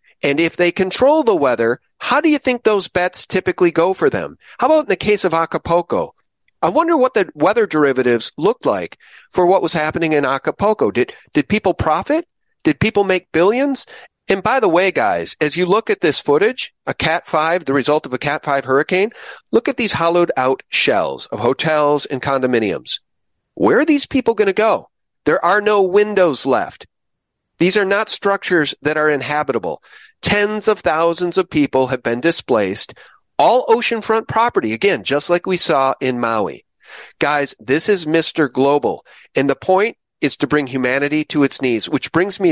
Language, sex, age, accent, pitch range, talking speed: English, male, 40-59, American, 140-205 Hz, 185 wpm